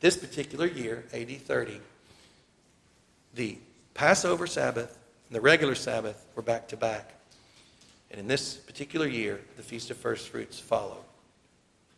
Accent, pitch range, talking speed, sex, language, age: American, 125-160 Hz, 135 wpm, male, English, 50-69